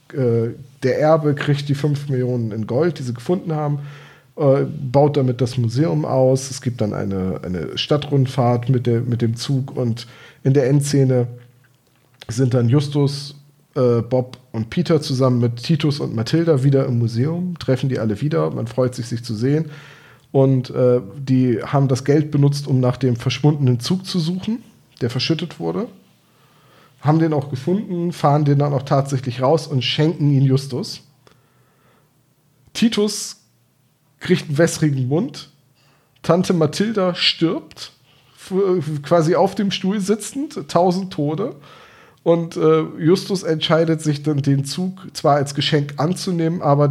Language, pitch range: German, 130-165 Hz